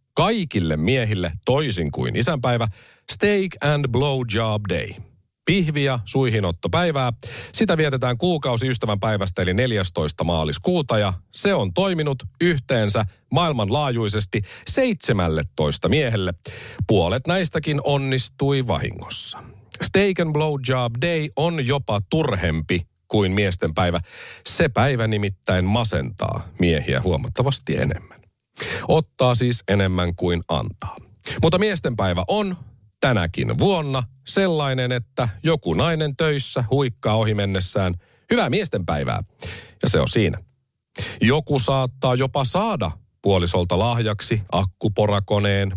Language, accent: Finnish, native